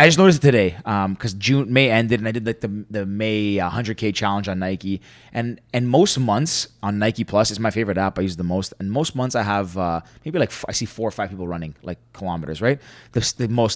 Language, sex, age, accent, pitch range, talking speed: English, male, 20-39, American, 100-125 Hz, 255 wpm